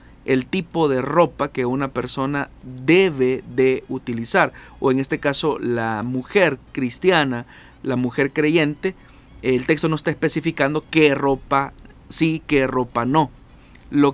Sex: male